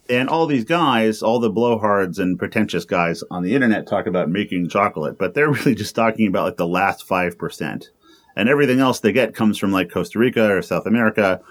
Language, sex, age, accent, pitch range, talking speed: English, male, 30-49, American, 85-110 Hz, 210 wpm